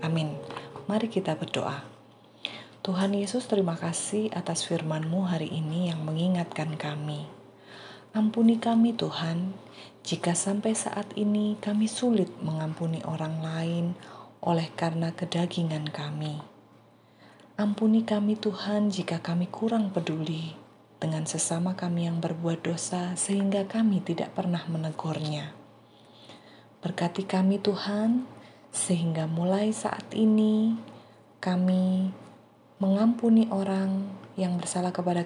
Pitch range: 155-195 Hz